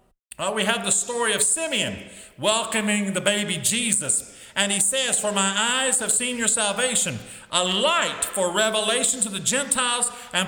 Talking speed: 160 wpm